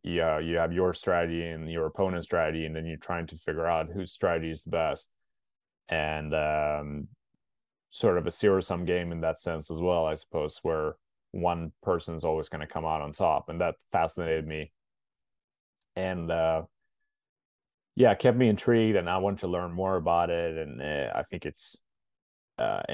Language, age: English, 20-39